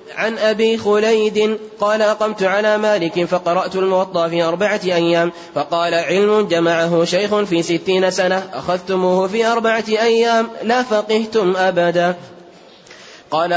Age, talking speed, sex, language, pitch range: 20-39, 120 wpm, male, Arabic, 175-215 Hz